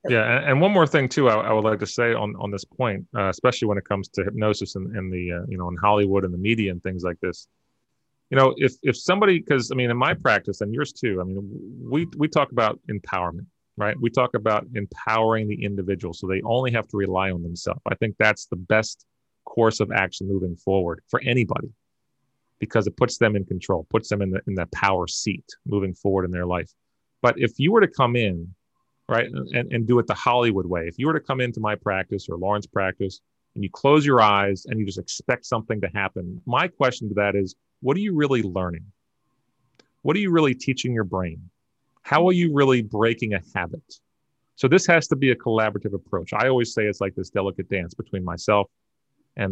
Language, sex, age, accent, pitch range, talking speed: English, male, 30-49, American, 95-125 Hz, 225 wpm